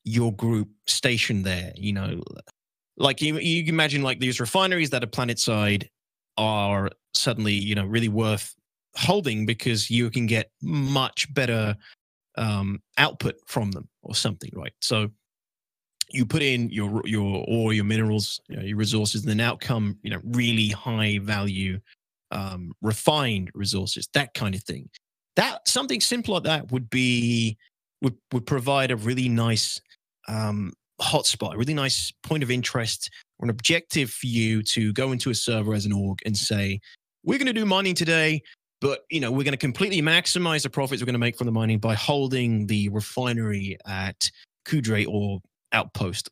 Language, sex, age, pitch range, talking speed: English, male, 20-39, 105-130 Hz, 170 wpm